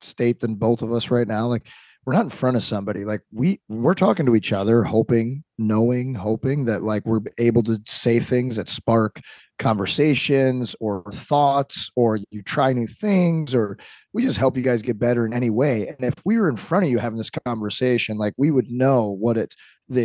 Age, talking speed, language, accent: 20-39, 210 wpm, English, American